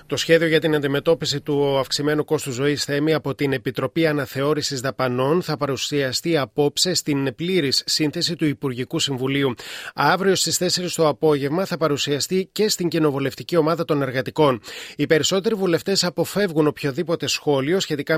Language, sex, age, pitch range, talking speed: Greek, male, 30-49, 140-170 Hz, 145 wpm